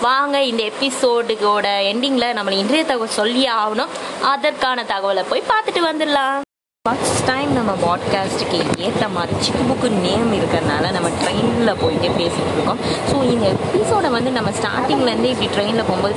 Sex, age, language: female, 20-39, Tamil